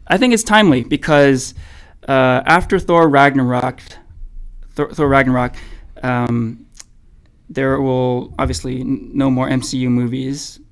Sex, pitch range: male, 125-150 Hz